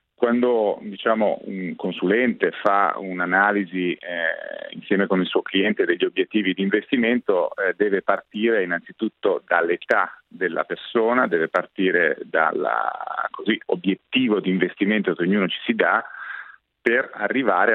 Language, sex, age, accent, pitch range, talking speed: Italian, male, 40-59, native, 95-120 Hz, 110 wpm